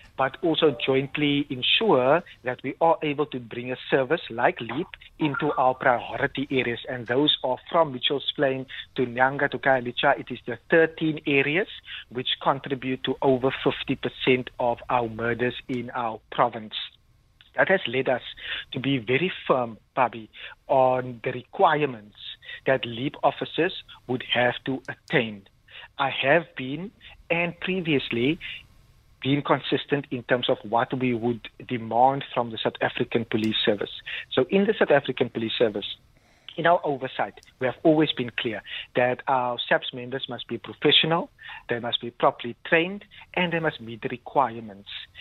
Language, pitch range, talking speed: English, 120-150 Hz, 155 wpm